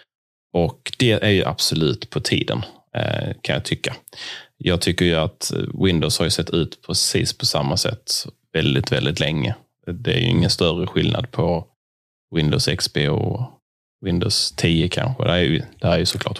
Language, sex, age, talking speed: English, male, 30-49, 175 wpm